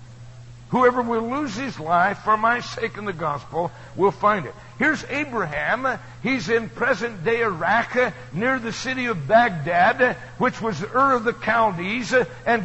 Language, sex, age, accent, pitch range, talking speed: English, male, 60-79, American, 145-240 Hz, 150 wpm